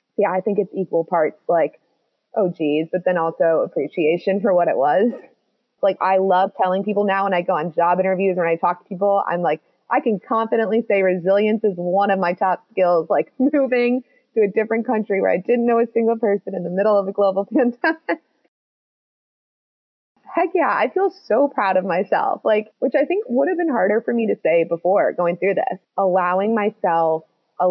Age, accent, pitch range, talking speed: 20-39, American, 175-225 Hz, 205 wpm